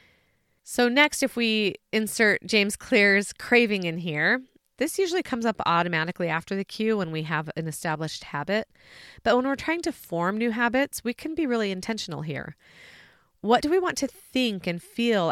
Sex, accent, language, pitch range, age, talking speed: female, American, English, 170-230 Hz, 30-49, 180 wpm